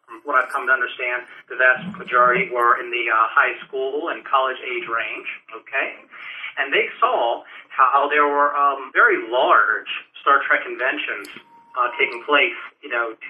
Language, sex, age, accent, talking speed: English, male, 40-59, American, 170 wpm